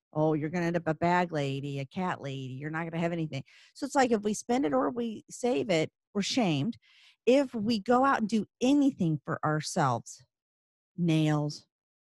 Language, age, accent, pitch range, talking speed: English, 40-59, American, 160-225 Hz, 205 wpm